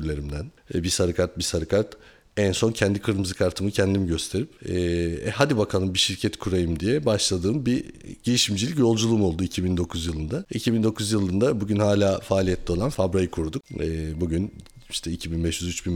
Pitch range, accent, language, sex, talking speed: 90-105 Hz, native, Turkish, male, 145 wpm